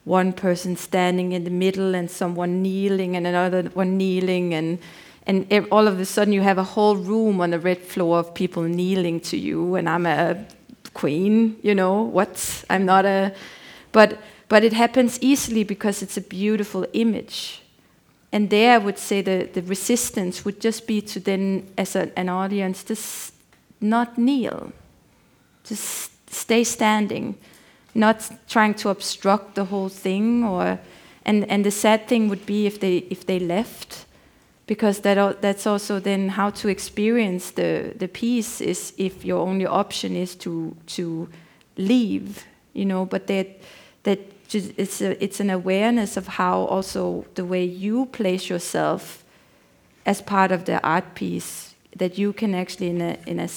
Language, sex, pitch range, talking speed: Swedish, female, 185-215 Hz, 165 wpm